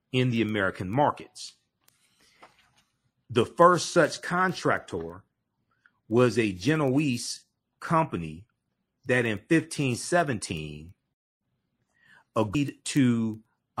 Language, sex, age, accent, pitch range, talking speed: English, male, 40-59, American, 110-145 Hz, 65 wpm